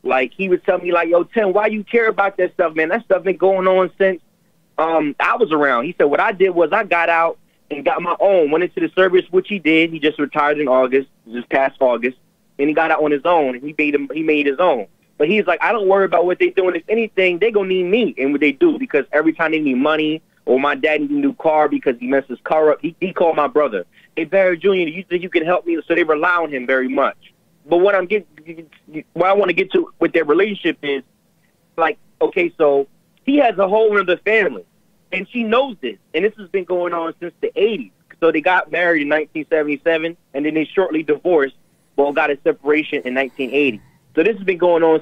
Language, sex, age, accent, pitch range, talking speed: English, male, 30-49, American, 145-190 Hz, 250 wpm